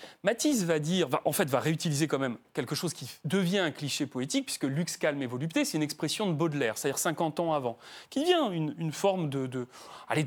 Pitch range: 135-190 Hz